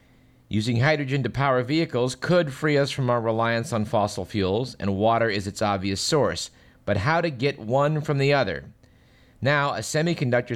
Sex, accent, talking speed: male, American, 175 wpm